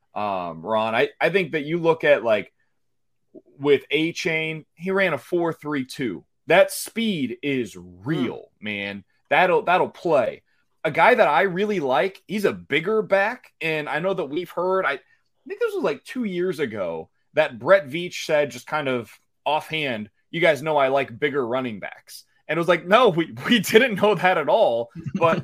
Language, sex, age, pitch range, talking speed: English, male, 30-49, 150-210 Hz, 185 wpm